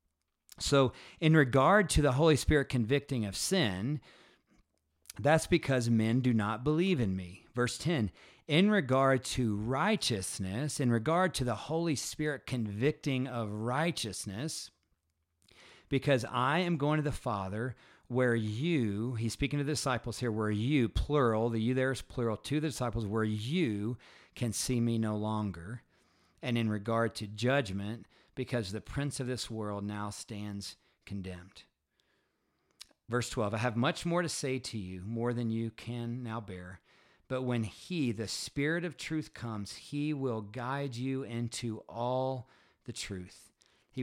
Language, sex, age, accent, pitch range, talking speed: English, male, 50-69, American, 105-135 Hz, 155 wpm